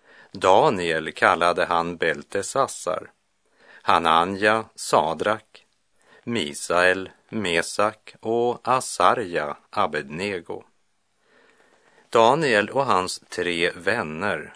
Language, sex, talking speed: Russian, male, 65 wpm